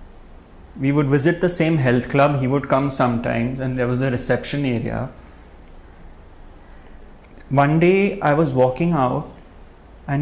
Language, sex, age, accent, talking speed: English, male, 30-49, Indian, 140 wpm